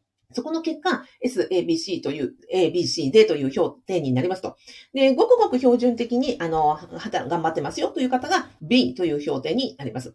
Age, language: 40-59, Japanese